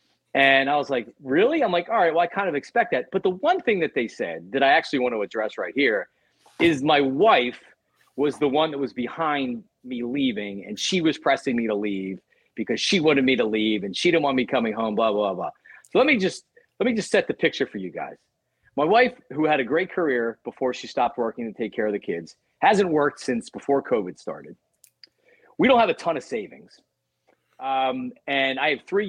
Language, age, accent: English, 40-59, American